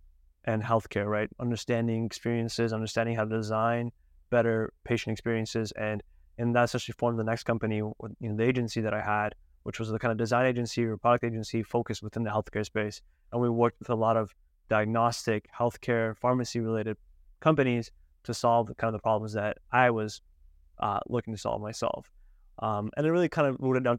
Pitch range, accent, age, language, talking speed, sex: 110-125 Hz, American, 20-39, English, 195 wpm, male